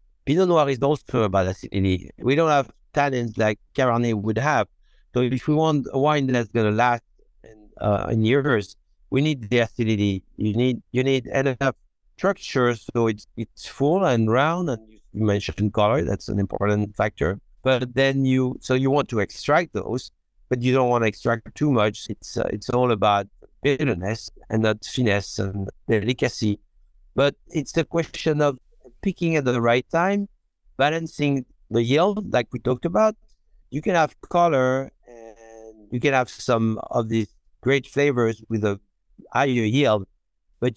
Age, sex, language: 60-79, male, English